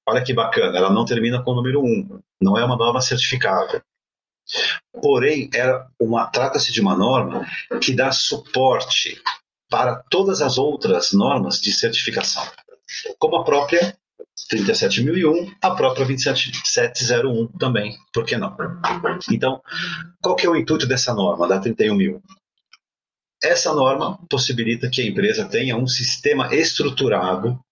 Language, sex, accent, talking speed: Portuguese, male, Brazilian, 135 wpm